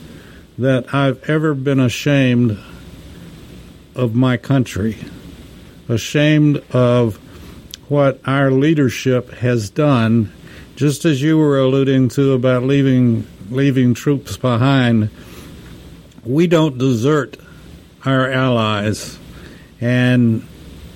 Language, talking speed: English, 90 wpm